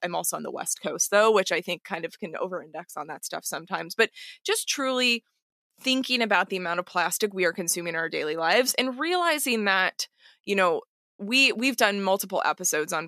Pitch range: 180-240 Hz